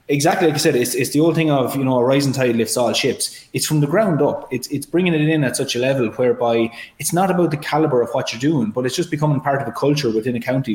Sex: male